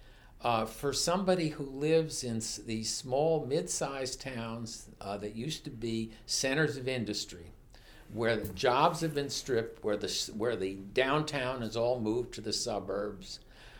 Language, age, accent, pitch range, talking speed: English, 60-79, American, 105-140 Hz, 155 wpm